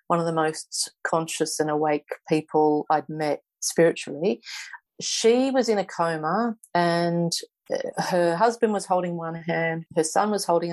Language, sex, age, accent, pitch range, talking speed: English, female, 40-59, Australian, 155-175 Hz, 150 wpm